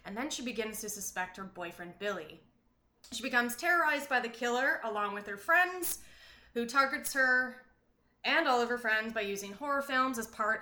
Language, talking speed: English, 185 wpm